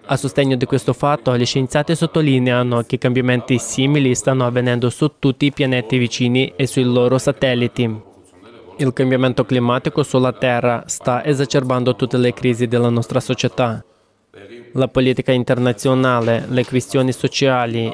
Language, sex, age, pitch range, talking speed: Italian, male, 20-39, 120-130 Hz, 135 wpm